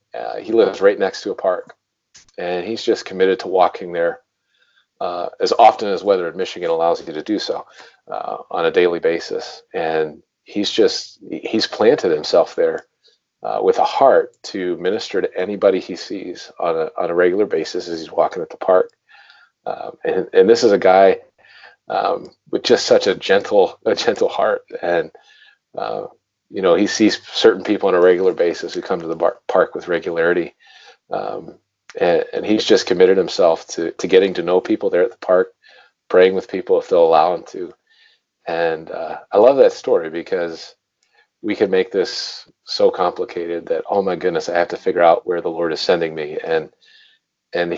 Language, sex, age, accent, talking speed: English, male, 40-59, American, 190 wpm